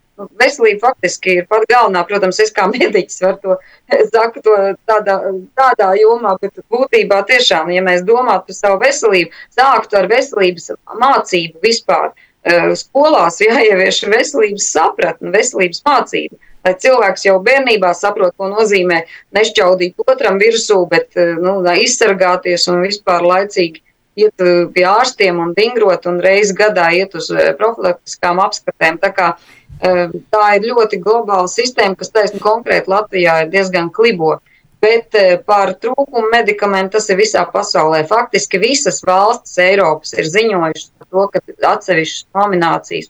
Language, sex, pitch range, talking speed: Russian, female, 175-215 Hz, 125 wpm